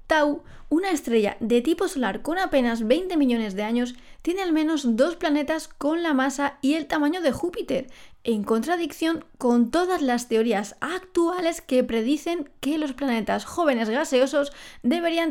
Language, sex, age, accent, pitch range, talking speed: Spanish, female, 20-39, Spanish, 245-315 Hz, 155 wpm